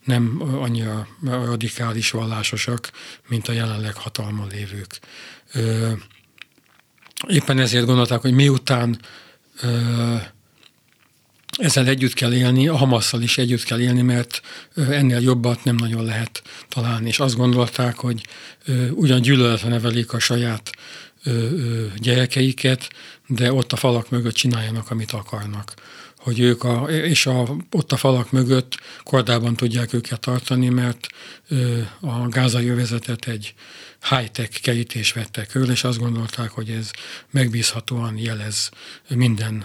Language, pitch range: Hungarian, 115-125 Hz